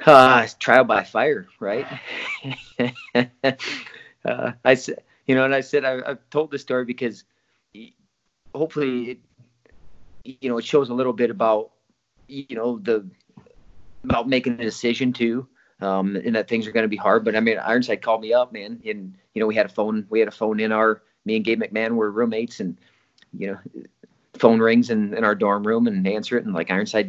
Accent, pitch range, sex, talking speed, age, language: American, 100-130 Hz, male, 200 wpm, 40-59, English